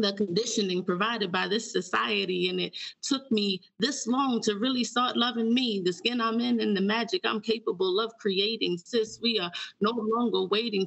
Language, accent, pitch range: English, American, 200-235 Hz